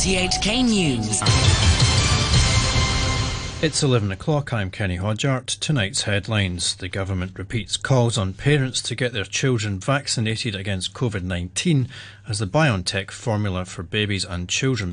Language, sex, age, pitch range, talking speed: English, male, 30-49, 95-115 Hz, 125 wpm